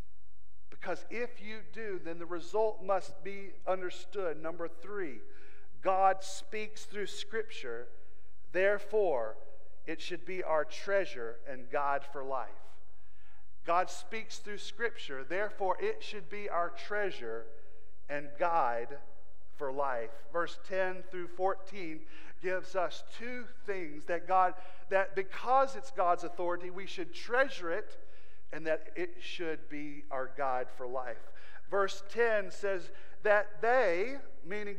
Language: English